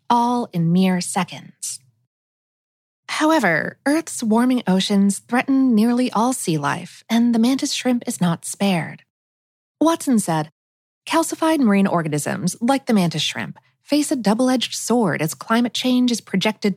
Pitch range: 185-255 Hz